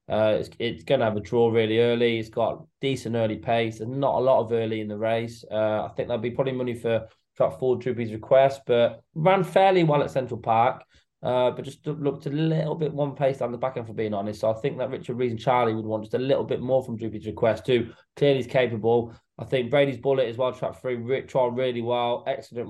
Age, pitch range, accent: 20-39, 110-125 Hz, British